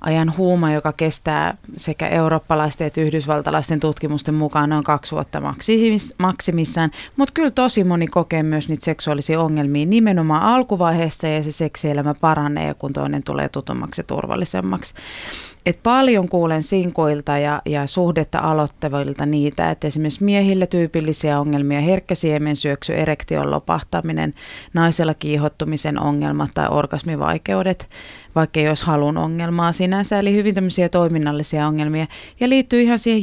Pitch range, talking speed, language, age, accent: 150-175 Hz, 130 wpm, Finnish, 30-49, native